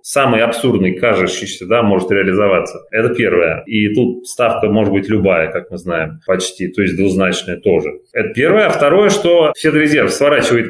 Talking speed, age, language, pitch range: 165 wpm, 30-49, Russian, 110-165 Hz